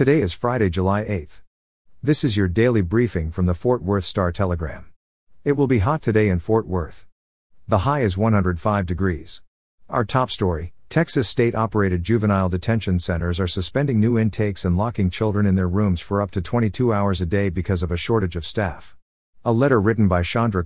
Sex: male